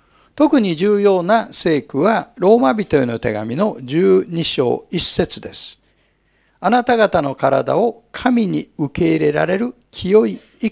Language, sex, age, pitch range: Japanese, male, 50-69, 165-250 Hz